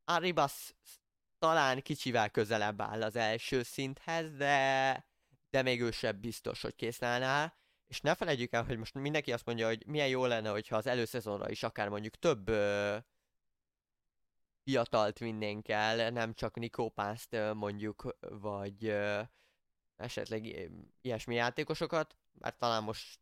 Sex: male